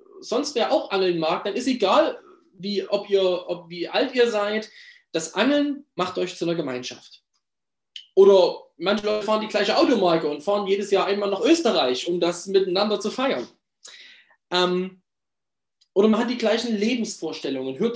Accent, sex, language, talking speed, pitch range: German, male, German, 155 wpm, 185-260 Hz